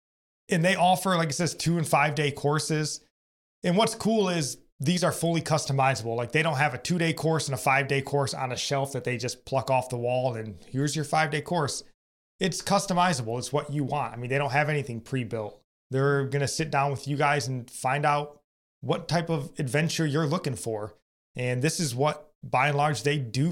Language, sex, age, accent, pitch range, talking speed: English, male, 20-39, American, 125-155 Hz, 220 wpm